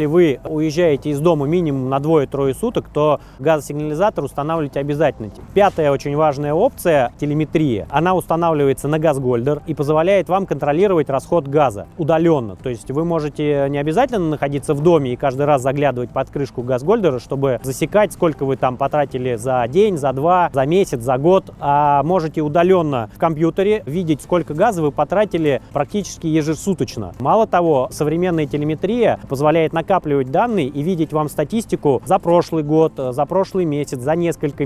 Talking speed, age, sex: 155 wpm, 30-49, male